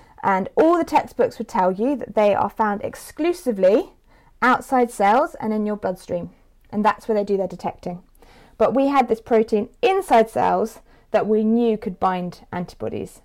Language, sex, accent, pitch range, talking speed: English, female, British, 200-255 Hz, 170 wpm